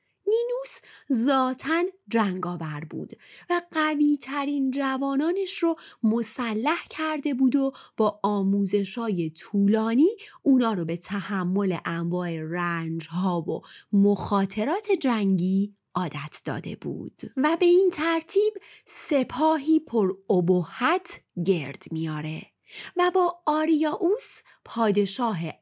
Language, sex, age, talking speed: Persian, female, 30-49, 95 wpm